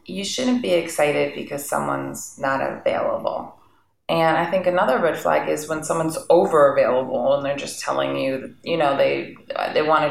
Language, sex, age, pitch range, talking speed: English, female, 20-39, 145-175 Hz, 180 wpm